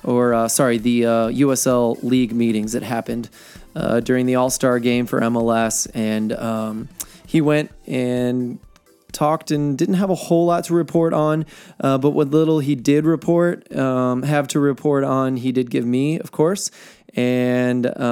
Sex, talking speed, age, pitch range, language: male, 170 wpm, 20-39, 120-145 Hz, English